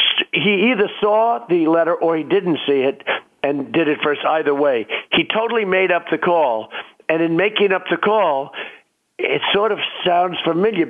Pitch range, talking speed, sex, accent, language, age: 145-185 Hz, 180 wpm, male, American, English, 50-69